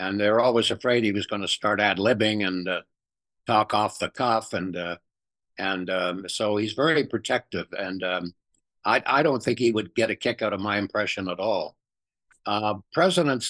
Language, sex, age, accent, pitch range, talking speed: English, male, 60-79, American, 100-125 Hz, 195 wpm